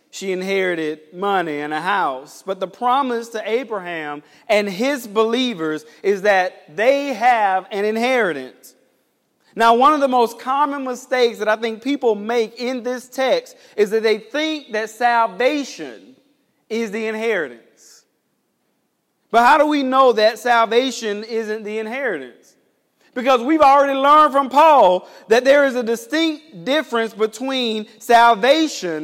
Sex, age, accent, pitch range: male, 40-59, American, 210-275 Hz